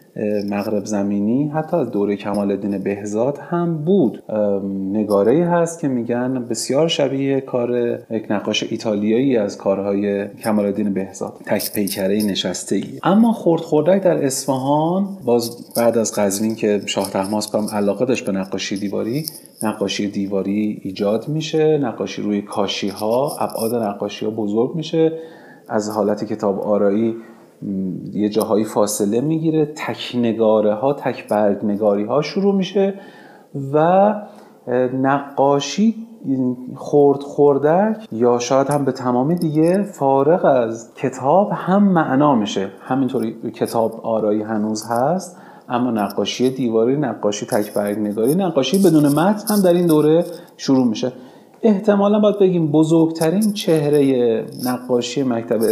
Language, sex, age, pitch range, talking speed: Persian, male, 30-49, 105-160 Hz, 120 wpm